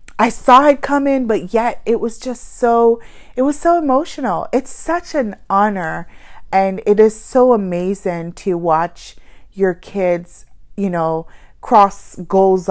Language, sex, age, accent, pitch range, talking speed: English, female, 30-49, American, 175-245 Hz, 150 wpm